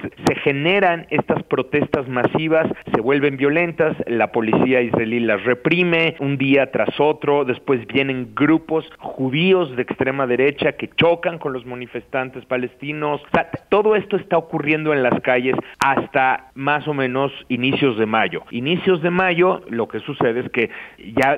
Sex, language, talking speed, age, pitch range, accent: male, Spanish, 155 wpm, 40-59, 120-150 Hz, Mexican